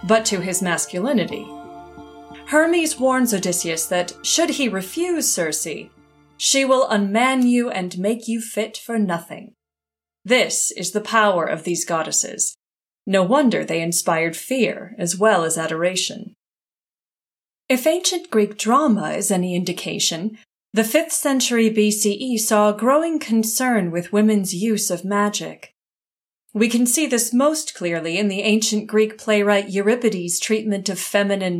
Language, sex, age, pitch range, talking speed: English, female, 30-49, 185-250 Hz, 140 wpm